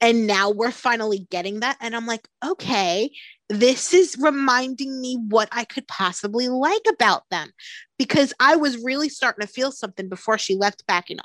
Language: English